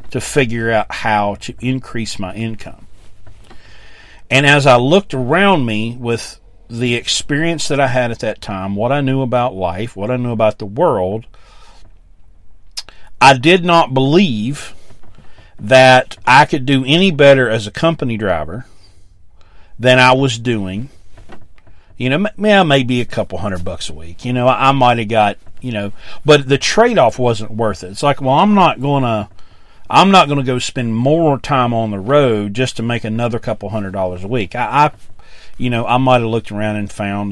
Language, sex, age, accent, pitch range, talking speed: English, male, 40-59, American, 100-135 Hz, 180 wpm